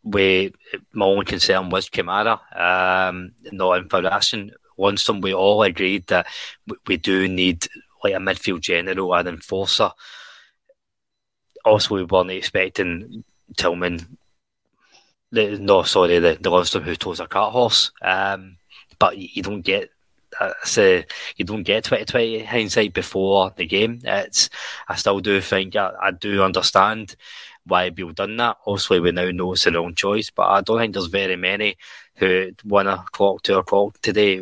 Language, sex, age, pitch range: English, male, 20-39, 90-105 Hz